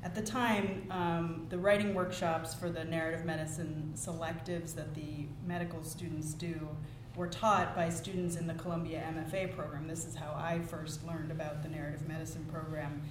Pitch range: 160-195 Hz